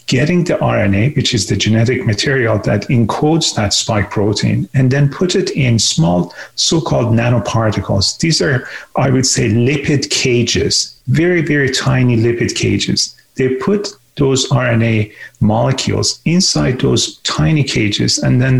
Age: 40-59